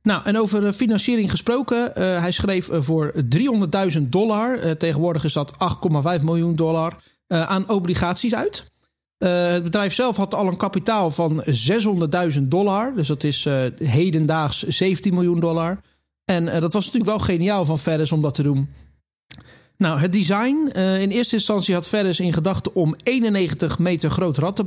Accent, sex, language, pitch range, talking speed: Dutch, male, Dutch, 165-205 Hz, 175 wpm